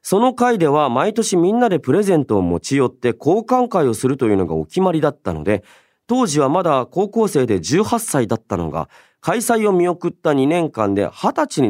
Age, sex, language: 40-59, male, Japanese